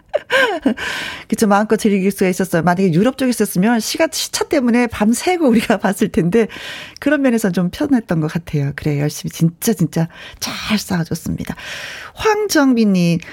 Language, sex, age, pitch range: Korean, female, 40-59, 185-265 Hz